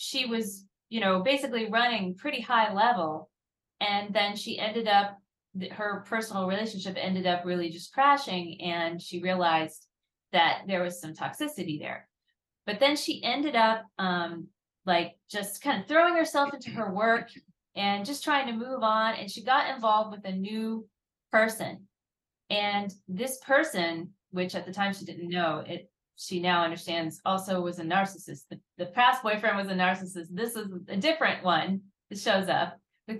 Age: 30-49